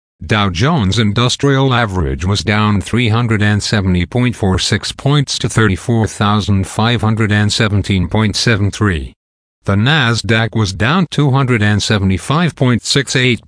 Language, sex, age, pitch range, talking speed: English, male, 50-69, 100-125 Hz, 65 wpm